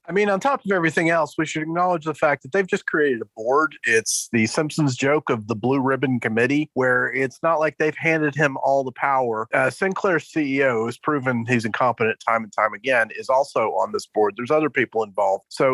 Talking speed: 225 wpm